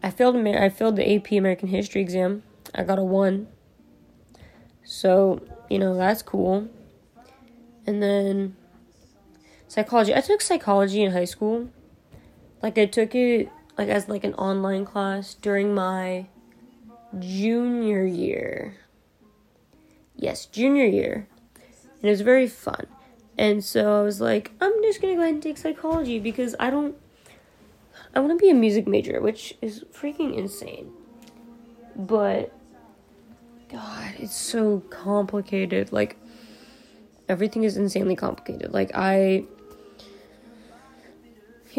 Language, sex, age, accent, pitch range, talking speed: English, female, 20-39, American, 195-240 Hz, 130 wpm